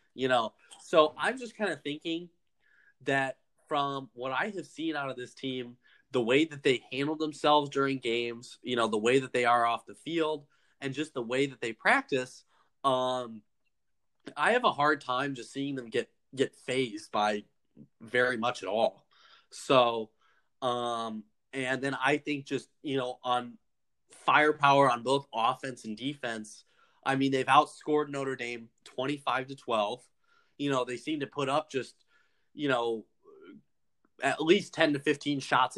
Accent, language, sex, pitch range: American, English, male, 125-150 Hz